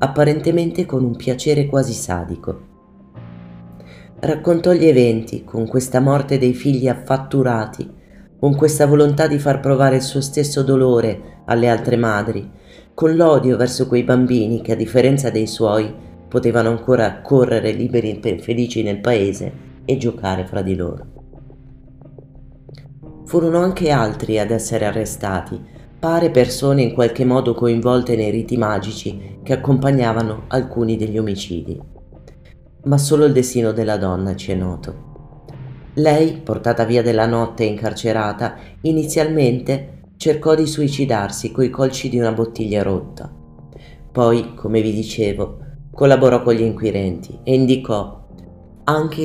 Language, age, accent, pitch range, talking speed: Italian, 30-49, native, 105-135 Hz, 130 wpm